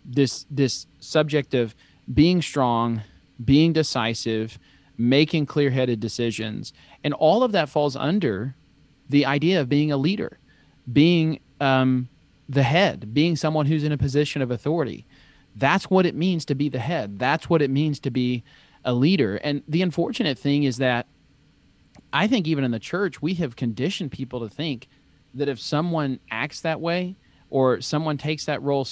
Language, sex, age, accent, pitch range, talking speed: English, male, 40-59, American, 125-155 Hz, 165 wpm